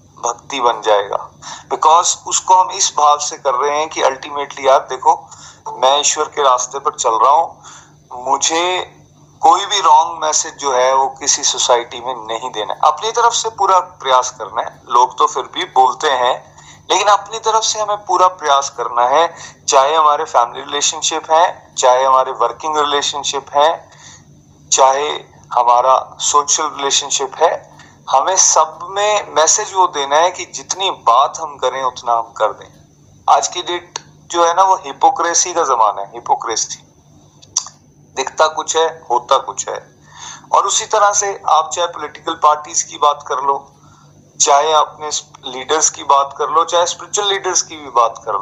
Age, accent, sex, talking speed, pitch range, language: 30-49, native, male, 165 wpm, 135-175 Hz, Hindi